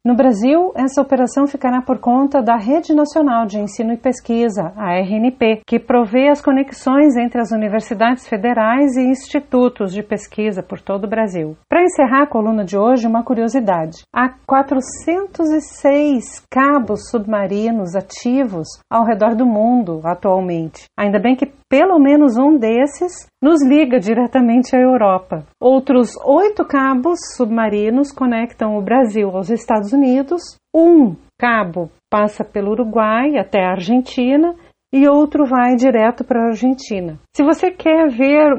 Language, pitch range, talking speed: Portuguese, 220-280 Hz, 140 wpm